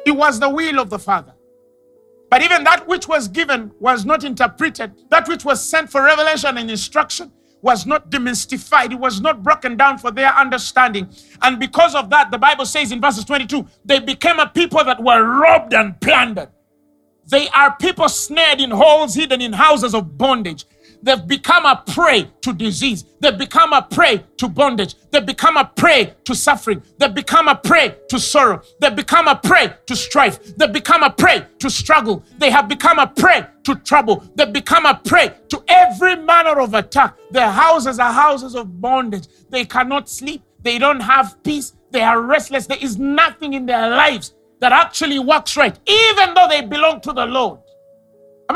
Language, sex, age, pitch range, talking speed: English, male, 50-69, 250-310 Hz, 185 wpm